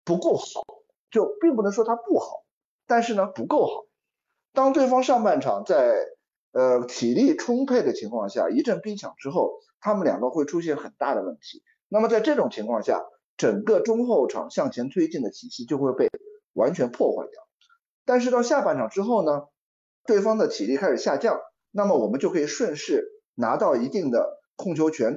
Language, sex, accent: Chinese, male, native